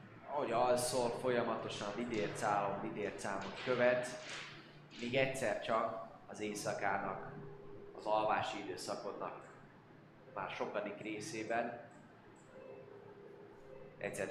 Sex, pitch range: male, 115-140 Hz